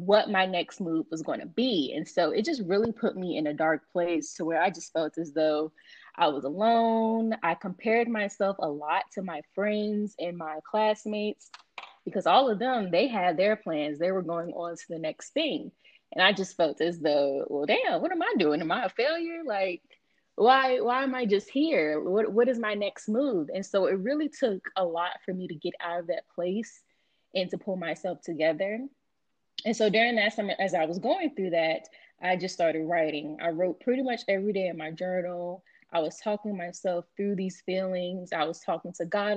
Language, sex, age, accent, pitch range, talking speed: English, female, 20-39, American, 165-210 Hz, 215 wpm